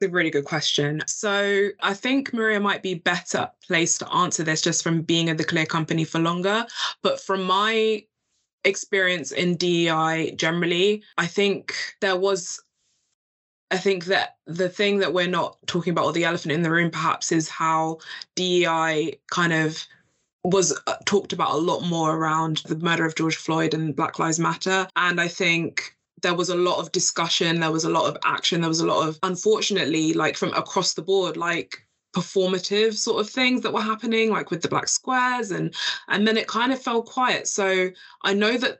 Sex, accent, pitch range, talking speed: female, British, 165-195 Hz, 190 wpm